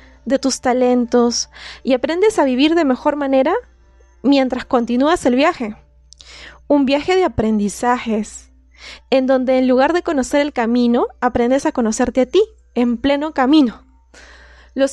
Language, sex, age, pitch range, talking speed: Spanish, female, 20-39, 230-285 Hz, 140 wpm